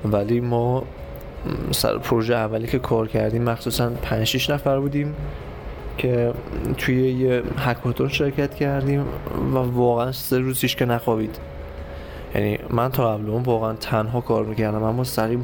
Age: 20-39